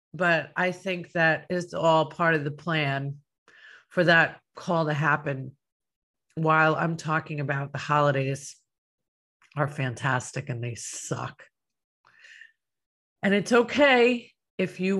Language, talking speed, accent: English, 125 wpm, American